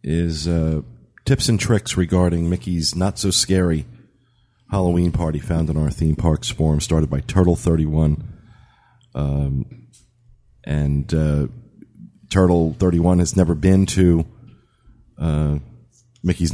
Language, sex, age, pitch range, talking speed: English, male, 40-59, 75-95 Hz, 125 wpm